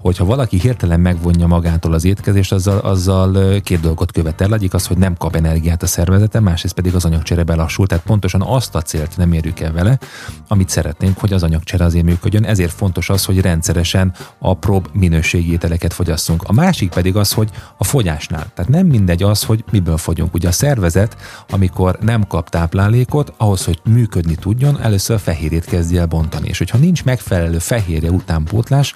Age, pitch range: 30-49, 85-105 Hz